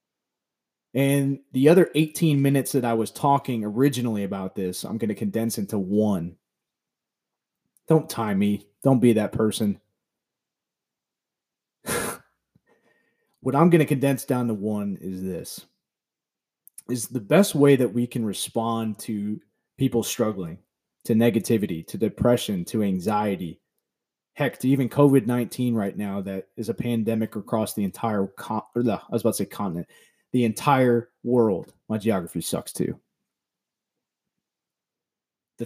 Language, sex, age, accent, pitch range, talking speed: English, male, 30-49, American, 105-135 Hz, 125 wpm